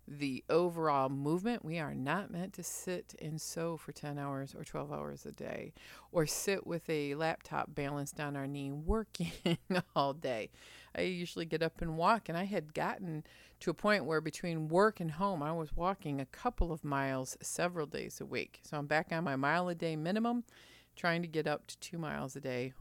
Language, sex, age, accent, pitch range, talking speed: English, female, 40-59, American, 135-180 Hz, 205 wpm